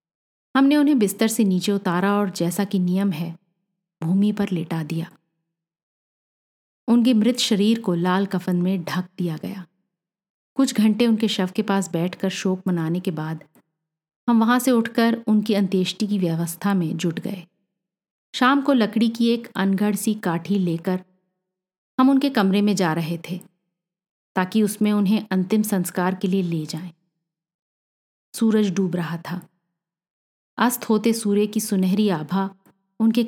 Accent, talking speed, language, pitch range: native, 150 wpm, Hindi, 175-210 Hz